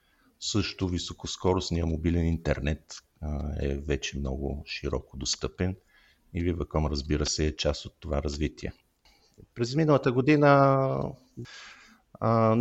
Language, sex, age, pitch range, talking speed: Bulgarian, male, 50-69, 75-90 Hz, 110 wpm